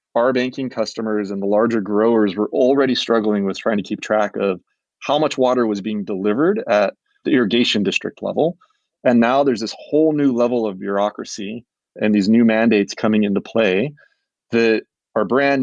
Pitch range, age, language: 105-125 Hz, 30-49, English